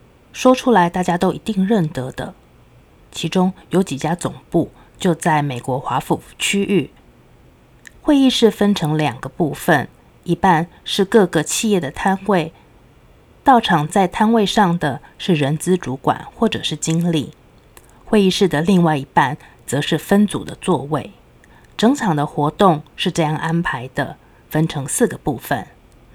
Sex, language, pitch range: female, Chinese, 145-190 Hz